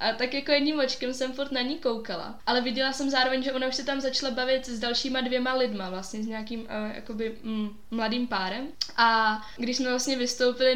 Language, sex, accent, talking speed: Czech, female, native, 210 wpm